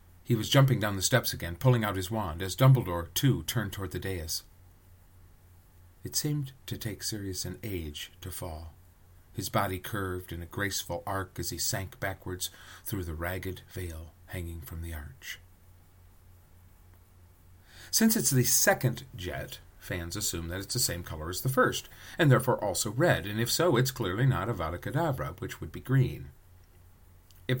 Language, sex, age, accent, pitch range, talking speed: English, male, 40-59, American, 90-125 Hz, 170 wpm